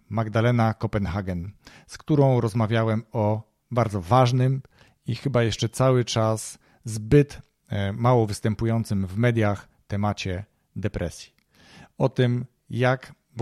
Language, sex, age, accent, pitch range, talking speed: Polish, male, 40-59, native, 105-130 Hz, 105 wpm